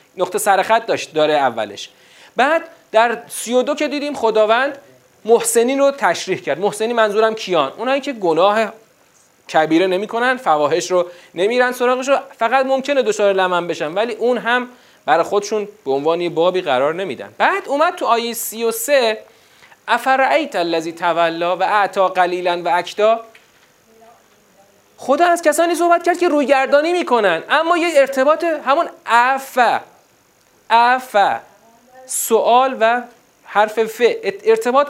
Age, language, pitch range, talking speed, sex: 40-59, Persian, 190-270 Hz, 130 wpm, male